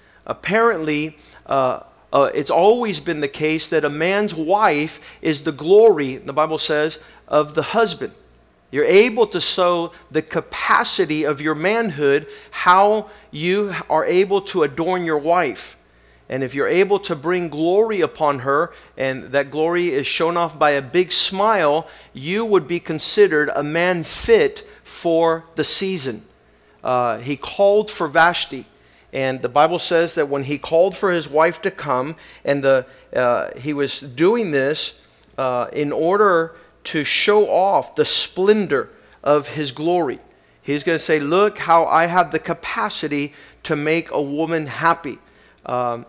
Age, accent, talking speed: 40-59, American, 155 wpm